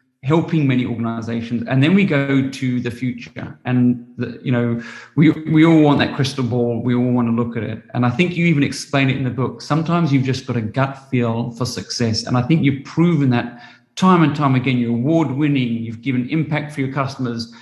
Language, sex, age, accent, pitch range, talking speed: English, male, 40-59, British, 125-155 Hz, 220 wpm